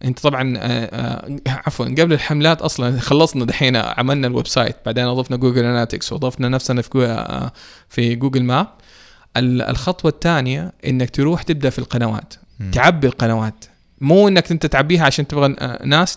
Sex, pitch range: male, 125-165 Hz